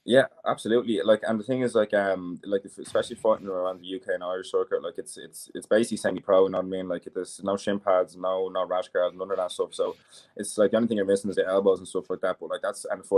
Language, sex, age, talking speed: English, male, 20-39, 290 wpm